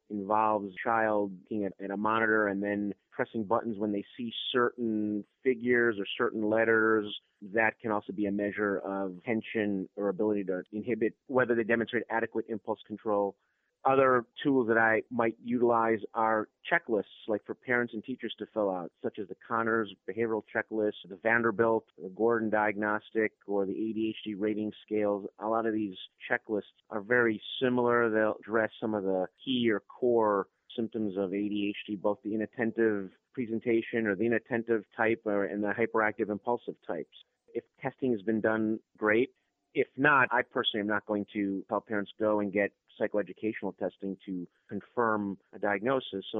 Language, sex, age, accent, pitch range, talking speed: English, male, 30-49, American, 100-115 Hz, 165 wpm